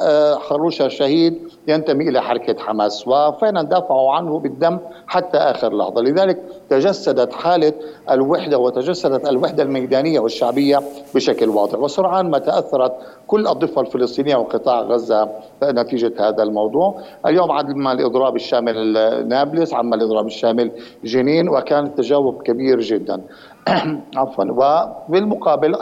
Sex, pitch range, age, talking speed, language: male, 120-160 Hz, 50-69, 115 wpm, Arabic